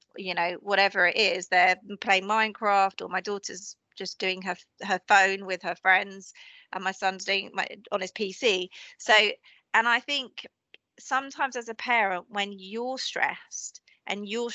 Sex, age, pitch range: female, 30-49, 195-260 Hz